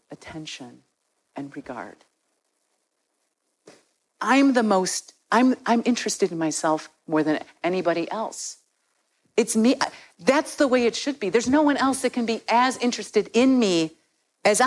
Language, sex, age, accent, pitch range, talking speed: English, female, 50-69, American, 205-270 Hz, 145 wpm